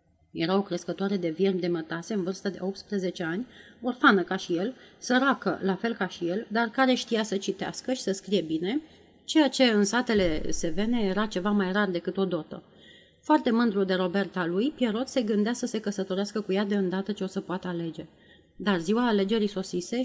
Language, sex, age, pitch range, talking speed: Romanian, female, 30-49, 180-220 Hz, 200 wpm